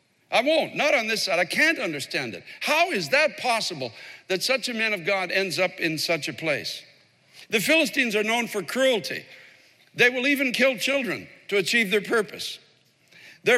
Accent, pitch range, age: American, 195-265 Hz, 60-79